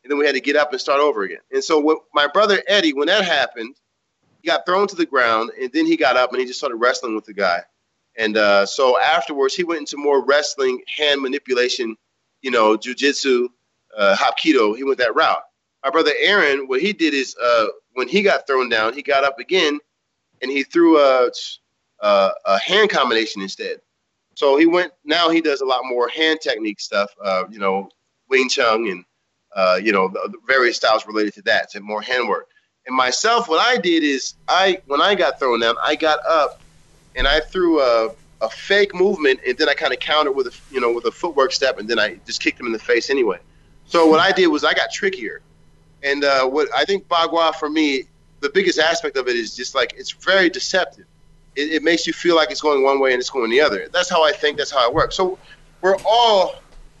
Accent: American